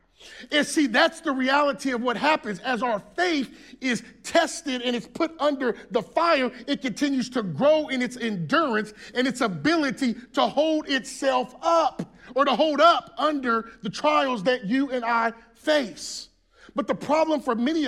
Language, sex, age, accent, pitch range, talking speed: English, male, 30-49, American, 240-295 Hz, 170 wpm